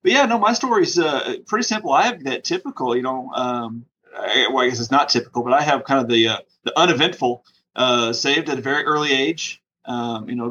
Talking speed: 240 wpm